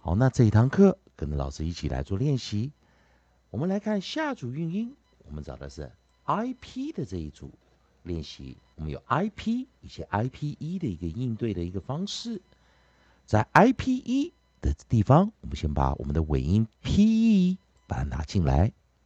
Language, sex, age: Chinese, male, 50-69